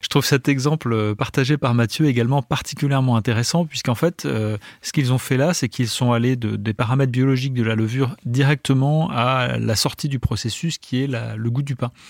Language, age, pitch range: French, 30-49, 115-140 Hz